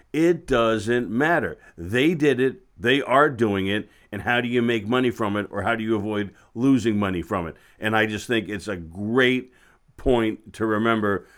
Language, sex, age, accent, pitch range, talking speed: English, male, 50-69, American, 105-125 Hz, 195 wpm